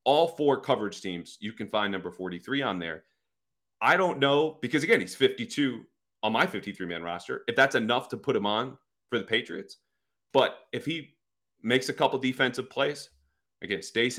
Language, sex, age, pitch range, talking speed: English, male, 30-49, 95-135 Hz, 180 wpm